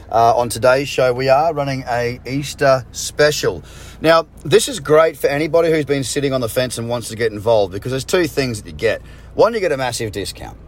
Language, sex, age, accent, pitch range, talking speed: English, male, 30-49, Australian, 105-140 Hz, 225 wpm